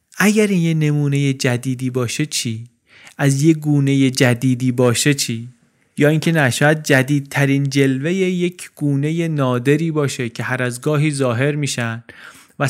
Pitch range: 125-160 Hz